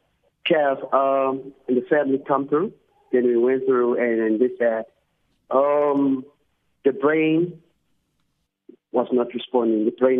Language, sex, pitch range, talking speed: English, male, 120-140 Hz, 130 wpm